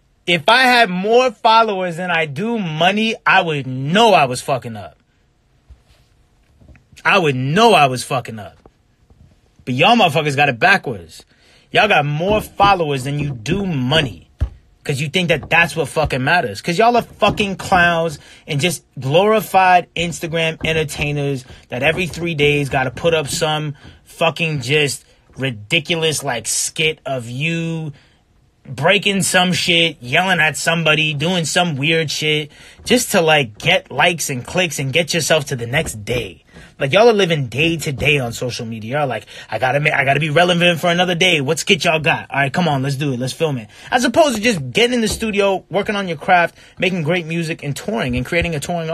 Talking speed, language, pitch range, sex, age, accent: 185 wpm, Romanian, 140-180 Hz, male, 30-49, American